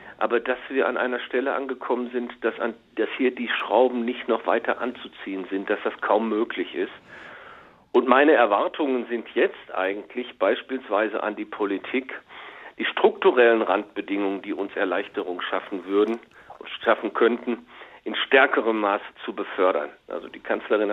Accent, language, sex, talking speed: German, German, male, 150 wpm